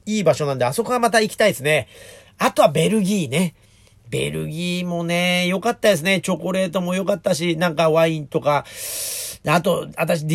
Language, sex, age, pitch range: Japanese, male, 40-59, 135-210 Hz